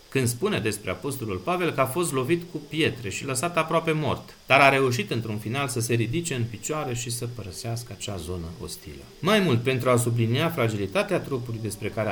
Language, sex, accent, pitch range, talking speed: Romanian, male, native, 110-140 Hz, 200 wpm